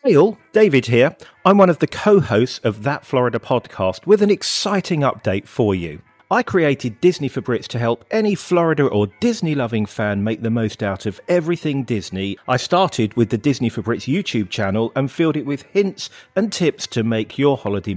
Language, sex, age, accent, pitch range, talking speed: English, male, 40-59, British, 115-170 Hz, 195 wpm